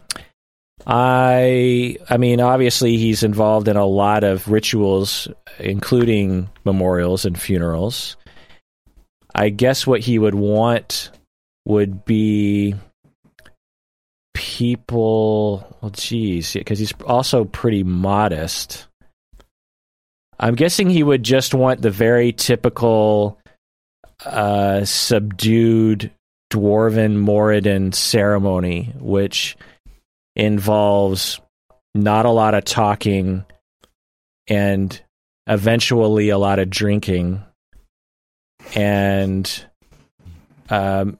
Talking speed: 85 wpm